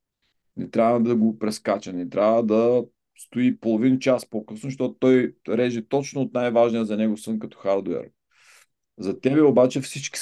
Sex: male